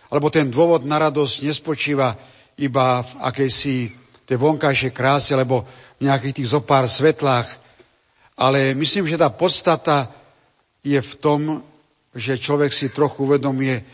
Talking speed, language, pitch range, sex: 135 wpm, Slovak, 130-150 Hz, male